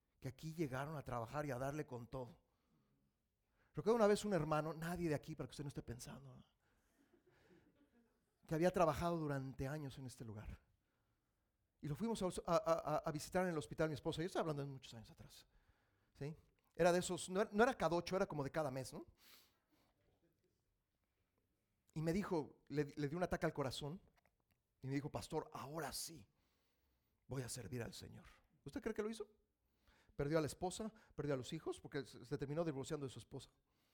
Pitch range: 120-175 Hz